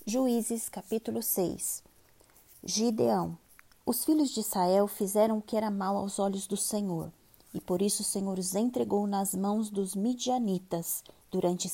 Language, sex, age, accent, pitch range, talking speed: Portuguese, female, 20-39, Brazilian, 190-225 Hz, 150 wpm